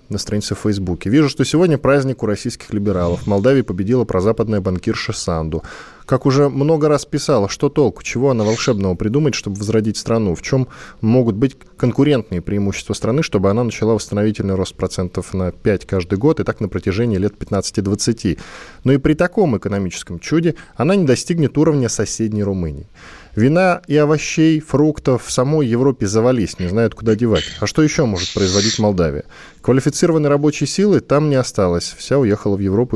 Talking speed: 170 wpm